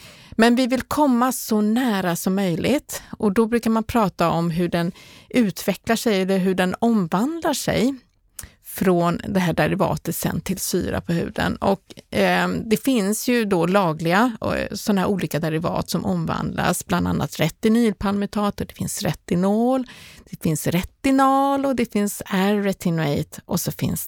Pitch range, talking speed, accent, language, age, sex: 175-225 Hz, 150 wpm, native, Swedish, 30-49, female